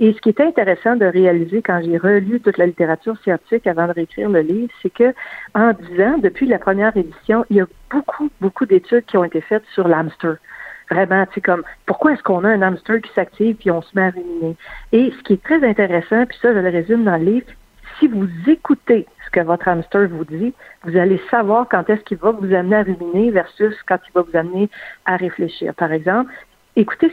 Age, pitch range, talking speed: 50-69, 175-220 Hz, 225 wpm